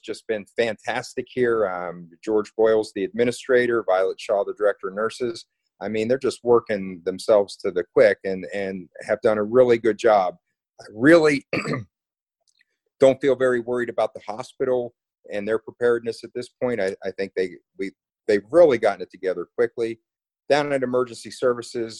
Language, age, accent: English, 40-59, American